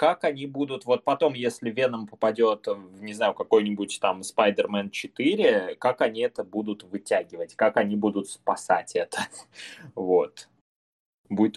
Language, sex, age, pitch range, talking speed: Russian, male, 20-39, 100-140 Hz, 135 wpm